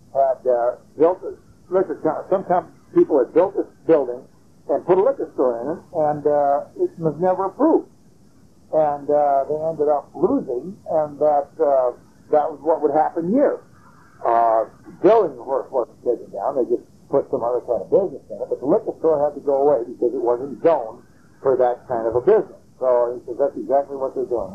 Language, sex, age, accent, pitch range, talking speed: English, male, 60-79, American, 140-195 Hz, 205 wpm